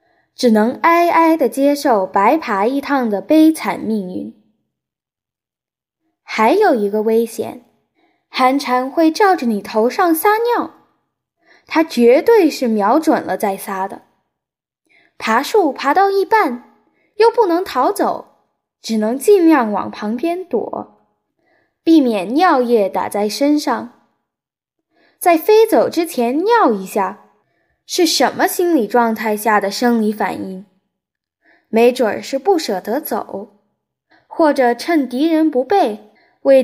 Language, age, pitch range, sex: Chinese, 10-29, 230-345 Hz, female